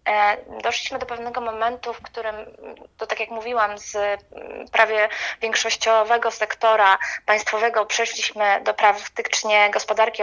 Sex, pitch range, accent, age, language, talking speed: female, 210-250 Hz, native, 20-39, Polish, 110 wpm